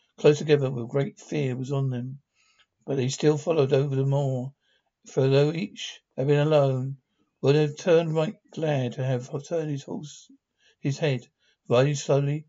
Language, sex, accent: English, male, British